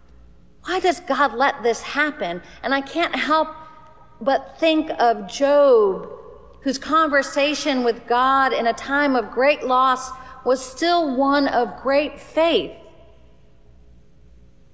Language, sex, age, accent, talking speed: English, female, 40-59, American, 120 wpm